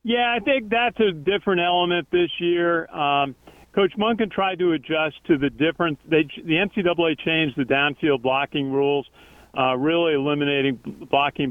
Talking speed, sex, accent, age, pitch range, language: 155 wpm, male, American, 50-69, 135-160 Hz, English